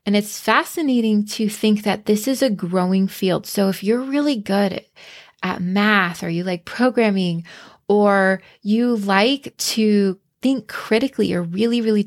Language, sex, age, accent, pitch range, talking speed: English, female, 20-39, American, 195-245 Hz, 150 wpm